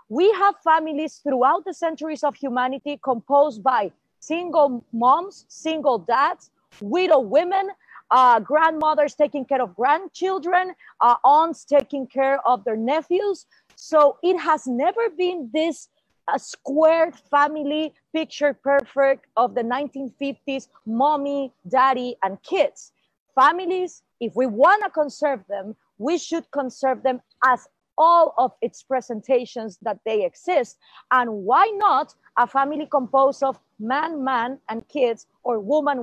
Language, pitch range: English, 245-315 Hz